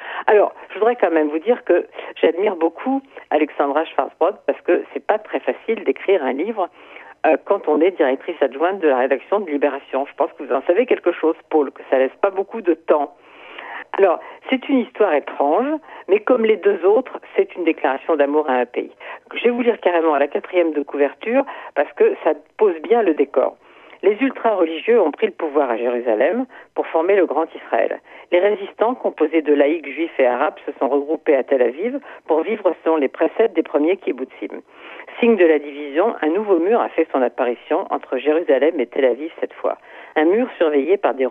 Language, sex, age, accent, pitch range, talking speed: French, female, 50-69, French, 145-245 Hz, 200 wpm